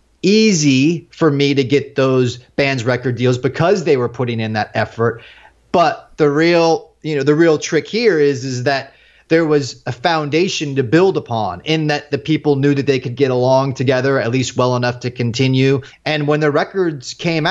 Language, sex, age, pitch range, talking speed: English, male, 30-49, 125-155 Hz, 195 wpm